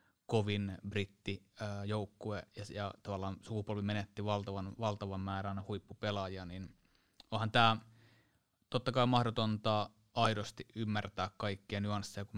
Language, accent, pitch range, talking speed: Finnish, native, 100-110 Hz, 110 wpm